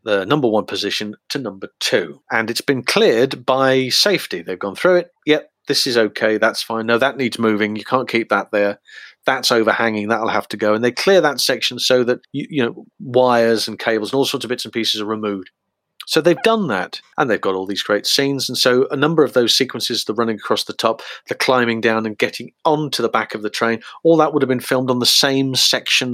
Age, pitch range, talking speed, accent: 40-59, 115-150 Hz, 240 wpm, British